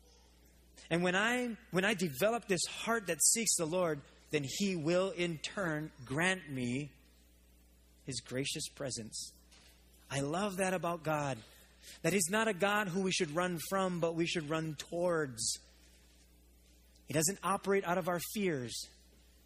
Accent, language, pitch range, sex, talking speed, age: American, English, 135-185 Hz, male, 150 wpm, 30-49